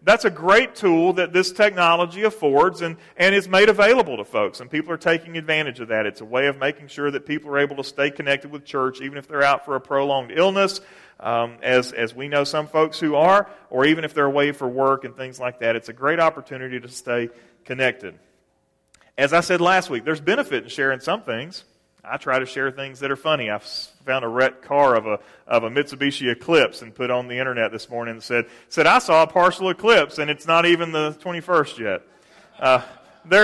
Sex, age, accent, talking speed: male, 40-59, American, 225 wpm